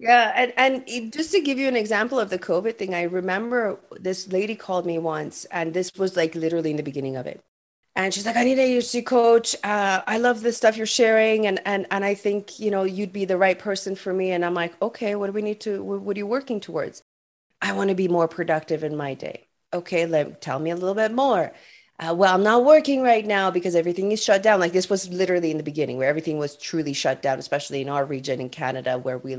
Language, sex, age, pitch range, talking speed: English, female, 30-49, 180-240 Hz, 250 wpm